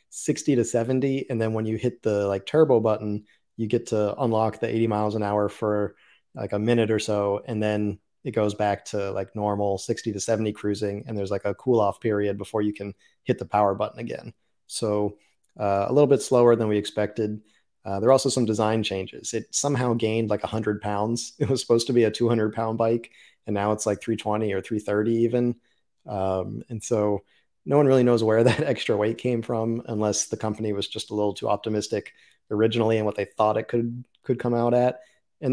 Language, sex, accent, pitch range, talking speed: English, male, American, 105-120 Hz, 215 wpm